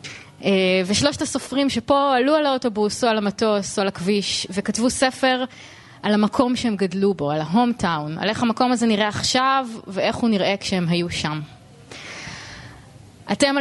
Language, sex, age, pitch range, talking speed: Hebrew, female, 20-39, 185-230 Hz, 150 wpm